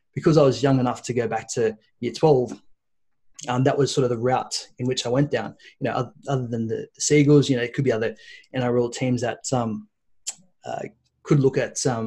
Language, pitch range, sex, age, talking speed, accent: English, 120-150 Hz, male, 30-49, 220 wpm, Australian